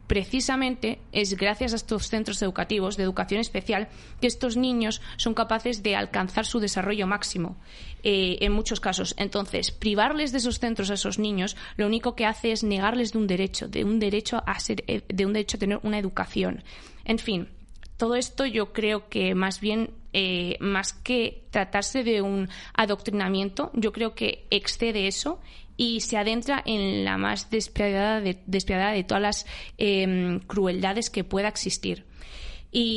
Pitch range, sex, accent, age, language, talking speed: 195-225 Hz, female, Spanish, 20-39, Spanish, 165 wpm